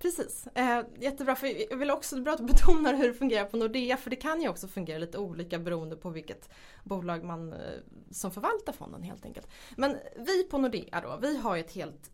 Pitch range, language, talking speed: 170-270 Hz, Swedish, 205 wpm